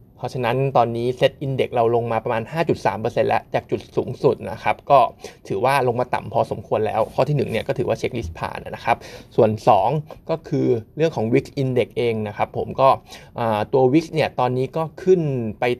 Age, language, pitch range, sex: 20-39, Thai, 115-140 Hz, male